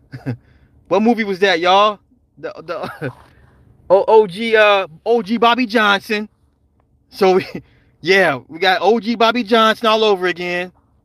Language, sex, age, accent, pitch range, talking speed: English, male, 30-49, American, 135-210 Hz, 130 wpm